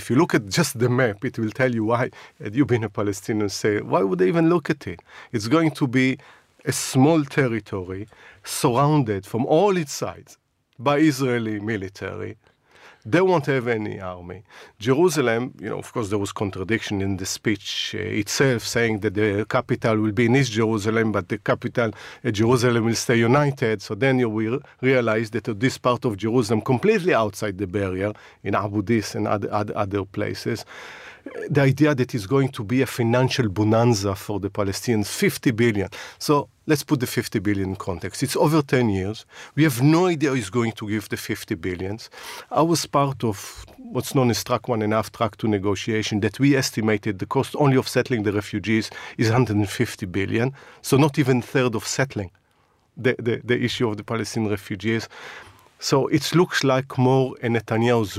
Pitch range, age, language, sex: 105-130 Hz, 50-69, English, male